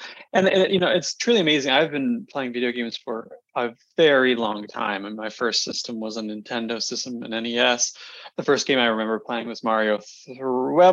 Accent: American